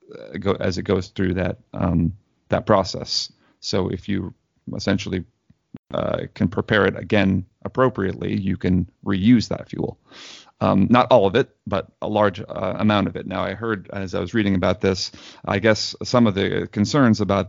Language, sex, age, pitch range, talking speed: English, male, 40-59, 95-110 Hz, 180 wpm